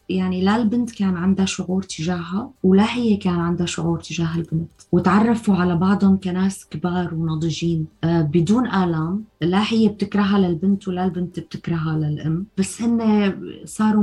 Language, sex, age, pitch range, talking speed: Arabic, female, 20-39, 175-210 Hz, 145 wpm